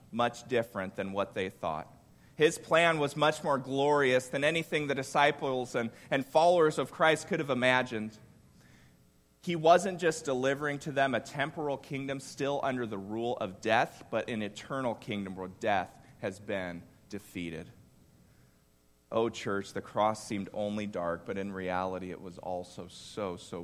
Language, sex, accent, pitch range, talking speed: English, male, American, 95-135 Hz, 160 wpm